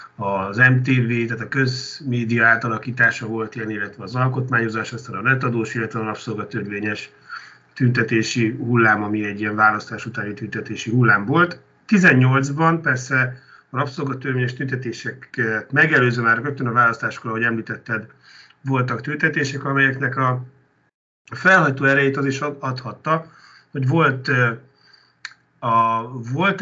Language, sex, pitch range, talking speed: Hungarian, male, 115-135 Hz, 120 wpm